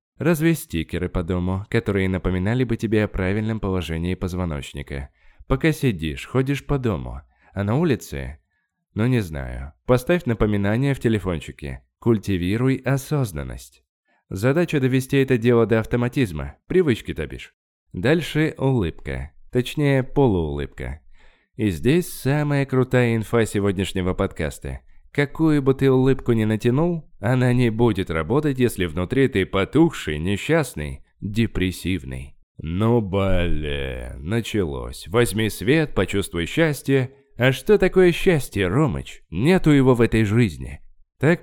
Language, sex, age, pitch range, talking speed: Russian, male, 20-39, 85-130 Hz, 120 wpm